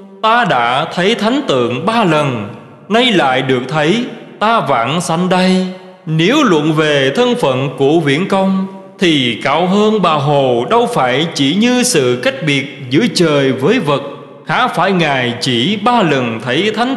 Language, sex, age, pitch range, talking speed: Vietnamese, male, 20-39, 140-210 Hz, 165 wpm